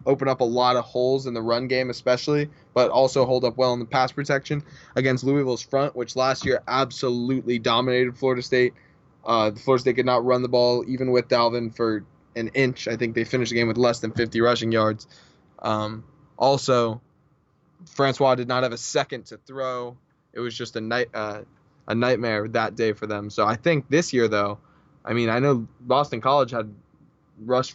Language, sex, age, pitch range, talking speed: English, male, 10-29, 115-135 Hz, 200 wpm